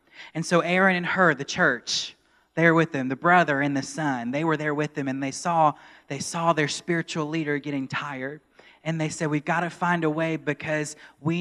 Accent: American